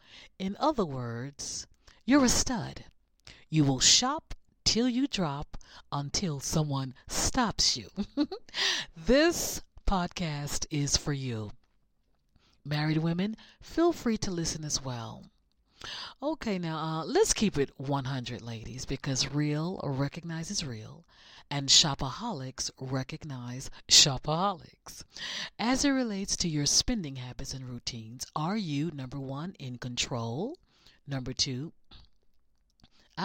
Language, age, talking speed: English, 40-59, 110 wpm